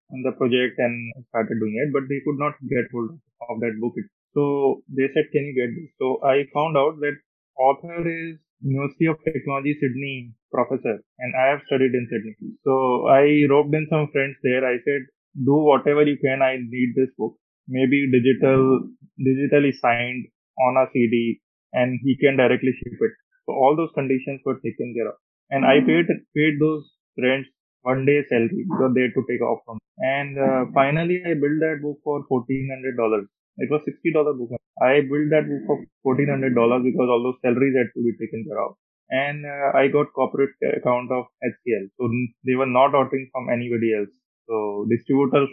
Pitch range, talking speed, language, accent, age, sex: 120-145 Hz, 195 wpm, English, Indian, 20-39, male